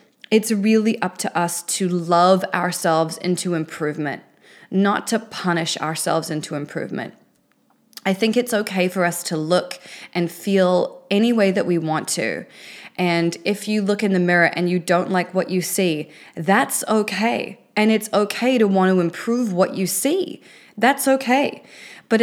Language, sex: English, female